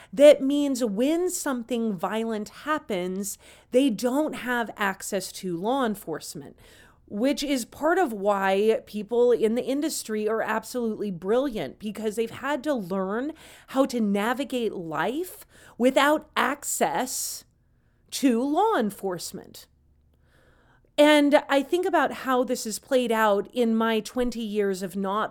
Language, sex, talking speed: English, female, 130 wpm